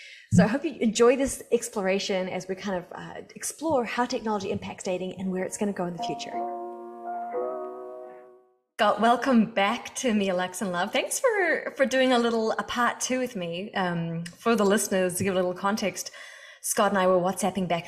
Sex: female